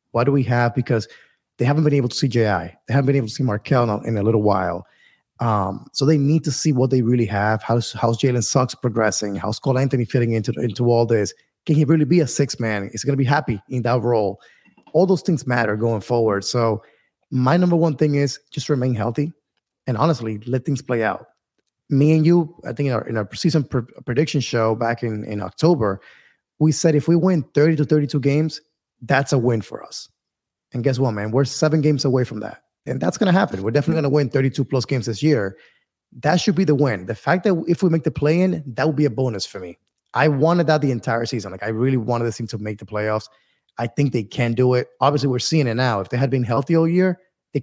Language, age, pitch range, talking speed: English, 20-39, 115-150 Hz, 245 wpm